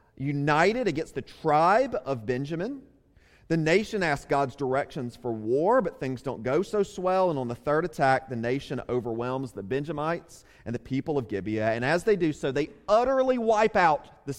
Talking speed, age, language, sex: 185 wpm, 30-49, English, male